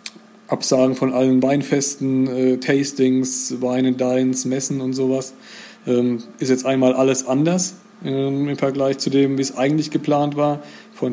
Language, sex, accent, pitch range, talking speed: German, male, German, 125-140 Hz, 150 wpm